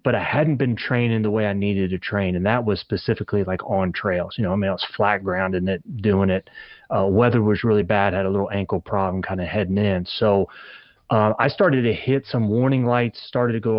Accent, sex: American, male